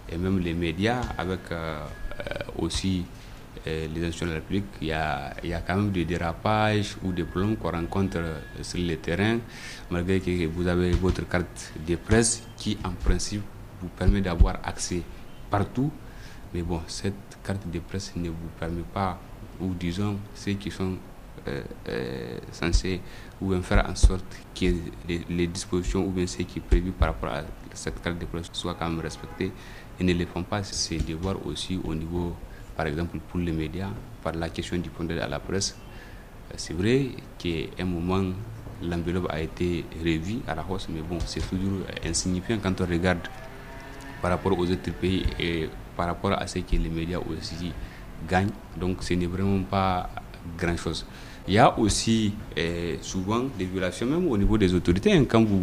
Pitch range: 85-100 Hz